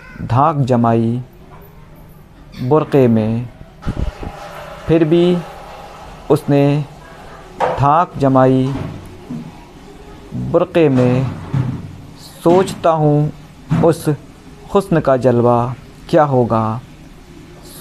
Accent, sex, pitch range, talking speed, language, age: native, male, 130-165 Hz, 65 wpm, Hindi, 50-69